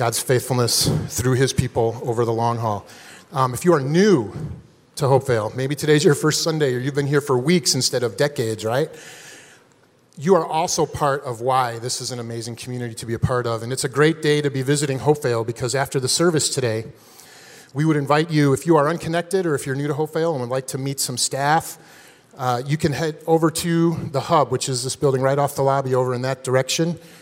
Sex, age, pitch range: male, 30-49, 125-150 Hz